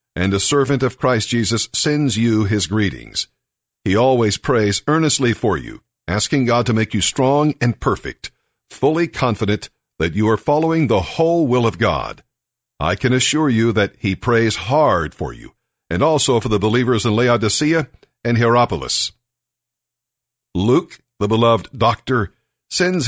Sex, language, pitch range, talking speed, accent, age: male, English, 110-130 Hz, 155 wpm, American, 60-79